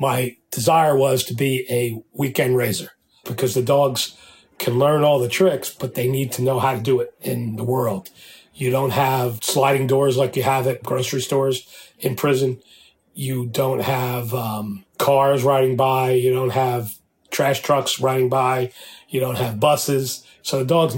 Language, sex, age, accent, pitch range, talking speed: English, male, 40-59, American, 120-140 Hz, 175 wpm